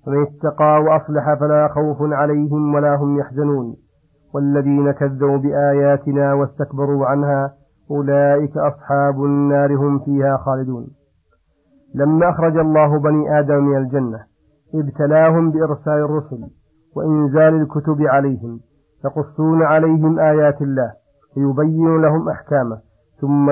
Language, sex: Arabic, male